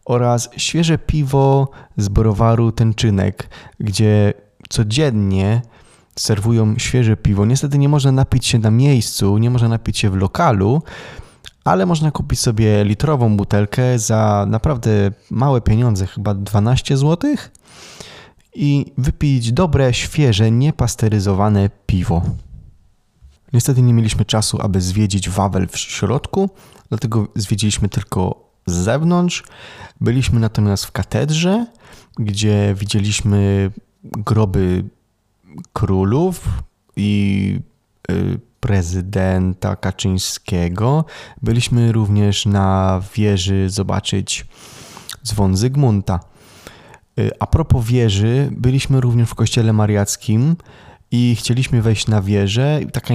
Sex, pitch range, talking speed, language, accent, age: male, 100-125 Hz, 100 wpm, Polish, native, 20-39